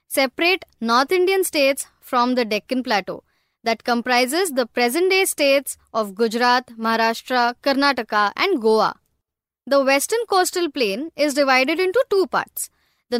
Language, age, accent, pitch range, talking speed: Marathi, 20-39, native, 245-345 Hz, 135 wpm